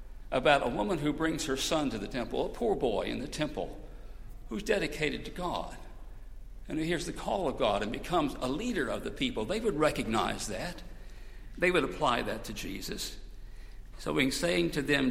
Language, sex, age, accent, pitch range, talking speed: English, male, 60-79, American, 100-165 Hz, 195 wpm